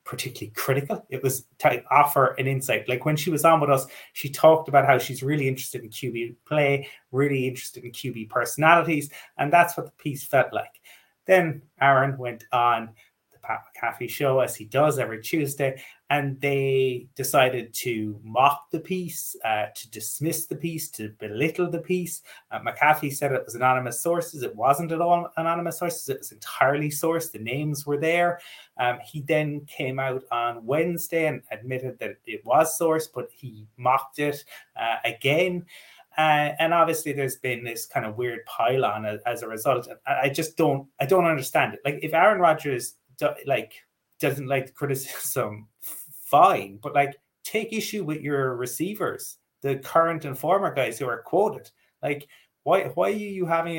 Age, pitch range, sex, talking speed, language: 30-49, 125-165 Hz, male, 180 wpm, English